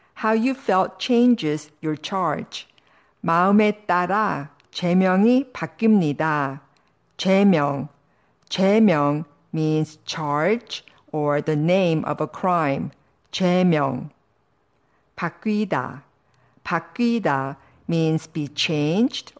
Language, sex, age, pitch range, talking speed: English, female, 50-69, 150-205 Hz, 75 wpm